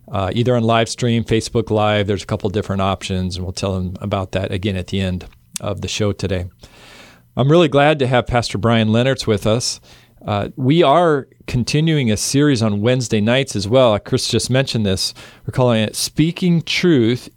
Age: 40-59